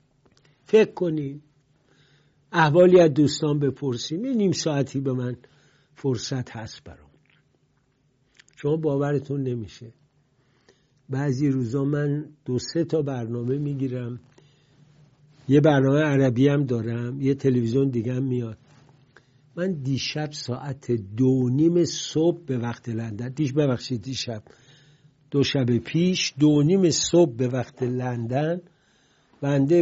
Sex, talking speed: male, 115 wpm